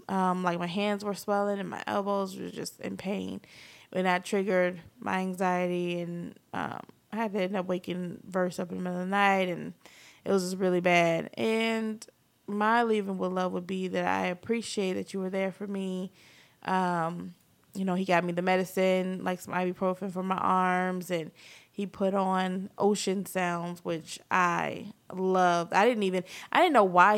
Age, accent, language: 20-39, American, English